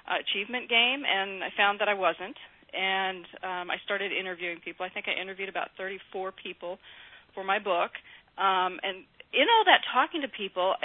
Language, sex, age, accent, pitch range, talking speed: English, female, 40-59, American, 180-215 Hz, 185 wpm